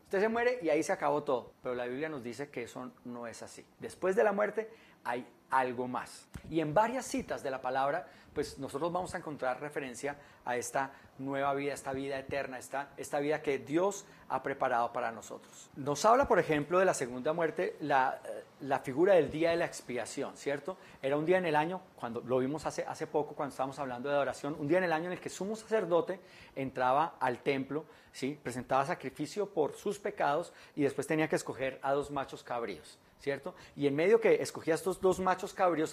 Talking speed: 210 wpm